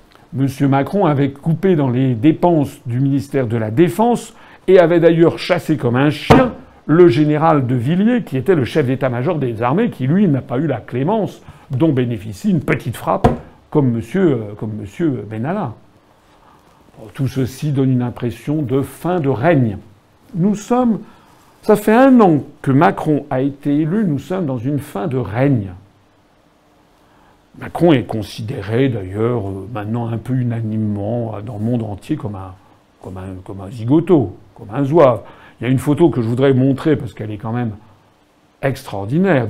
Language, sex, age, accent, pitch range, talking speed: French, male, 60-79, French, 115-155 Hz, 170 wpm